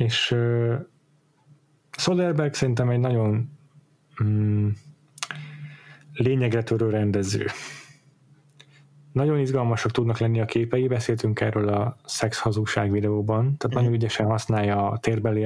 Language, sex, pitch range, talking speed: Hungarian, male, 110-135 Hz, 110 wpm